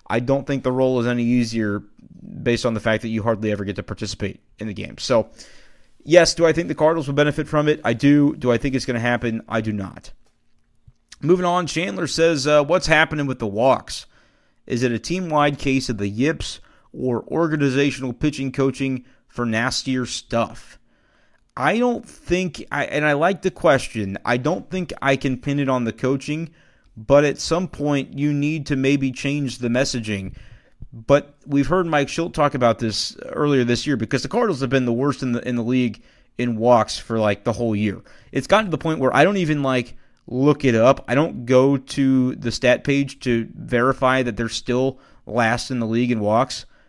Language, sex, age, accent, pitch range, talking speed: English, male, 30-49, American, 120-145 Hz, 205 wpm